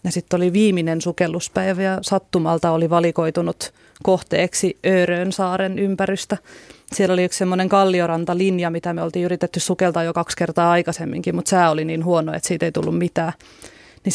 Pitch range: 170-185 Hz